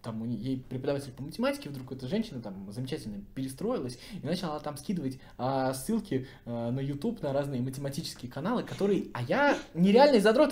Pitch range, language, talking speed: 125-175 Hz, Russian, 170 wpm